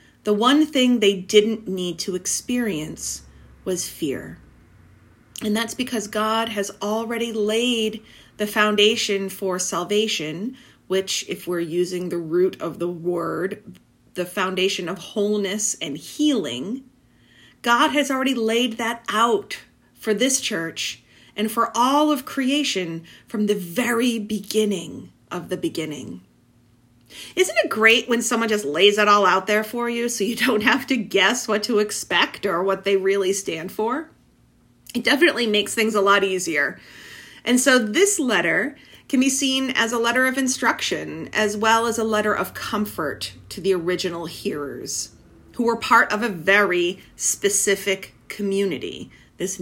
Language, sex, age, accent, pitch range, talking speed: English, female, 30-49, American, 180-235 Hz, 150 wpm